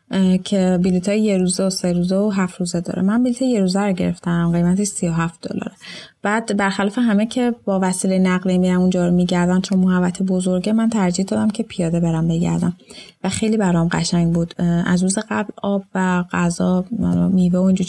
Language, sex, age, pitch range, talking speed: Persian, female, 20-39, 180-205 Hz, 185 wpm